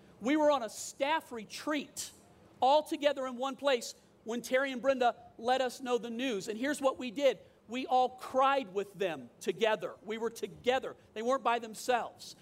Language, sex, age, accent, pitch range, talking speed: English, male, 40-59, American, 240-290 Hz, 185 wpm